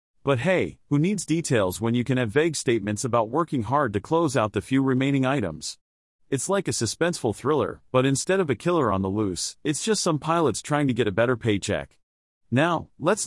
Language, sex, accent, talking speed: English, male, American, 210 wpm